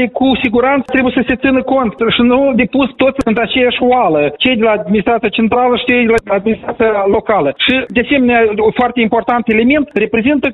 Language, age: Romanian, 40-59